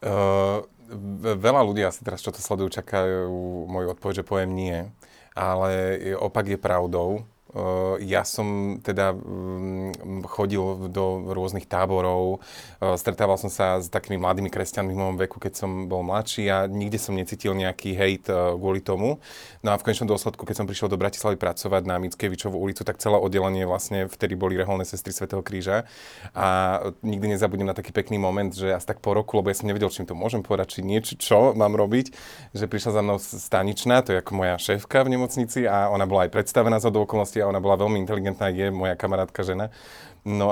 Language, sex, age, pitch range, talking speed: Slovak, male, 30-49, 95-105 Hz, 185 wpm